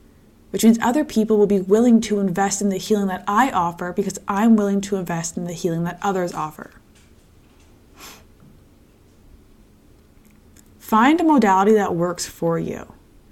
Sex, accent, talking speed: female, American, 150 wpm